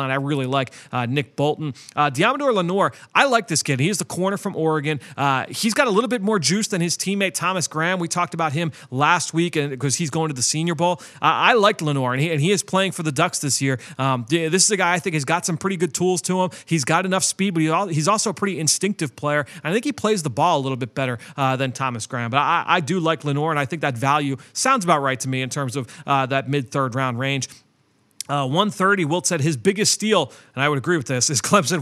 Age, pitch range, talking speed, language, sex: 30-49, 135-175 Hz, 255 wpm, English, male